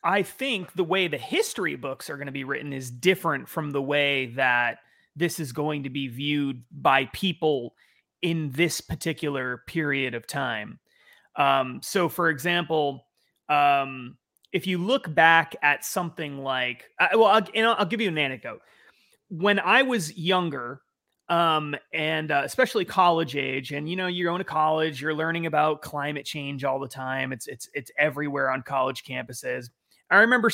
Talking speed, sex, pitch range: 175 wpm, male, 140-185 Hz